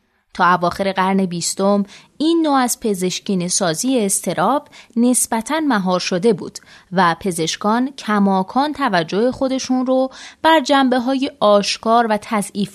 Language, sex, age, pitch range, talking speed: Persian, female, 20-39, 185-240 Hz, 120 wpm